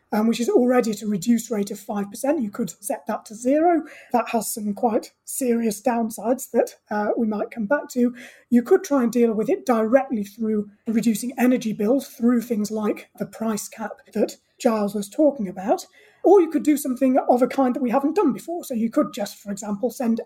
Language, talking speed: English, 215 wpm